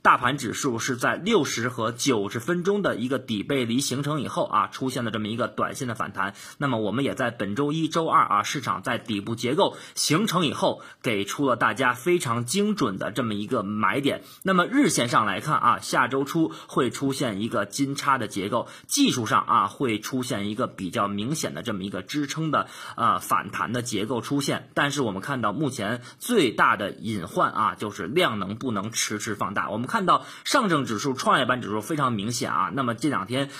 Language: Chinese